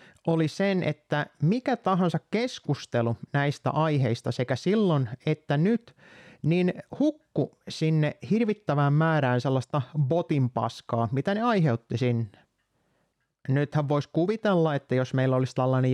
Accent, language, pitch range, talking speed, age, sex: native, Finnish, 130-175 Hz, 115 wpm, 30-49, male